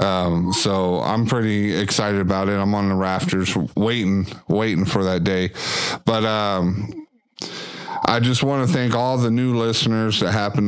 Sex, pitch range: male, 100-120 Hz